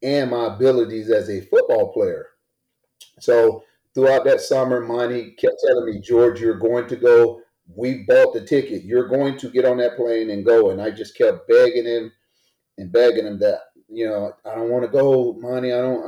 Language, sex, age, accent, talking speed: English, male, 40-59, American, 200 wpm